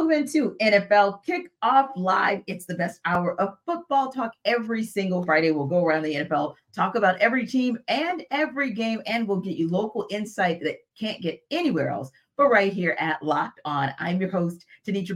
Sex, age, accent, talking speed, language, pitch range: female, 40-59, American, 190 wpm, English, 170-230 Hz